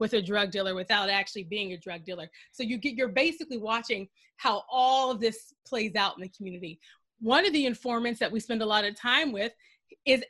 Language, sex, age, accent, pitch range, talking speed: English, female, 30-49, American, 205-275 Hz, 220 wpm